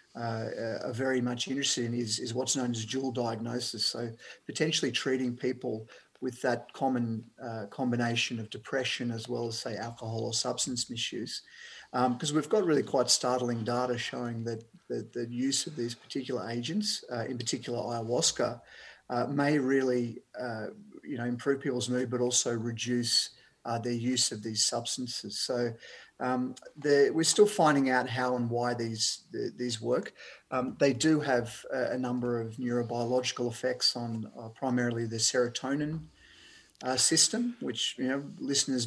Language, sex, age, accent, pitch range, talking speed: English, male, 30-49, Australian, 115-130 Hz, 160 wpm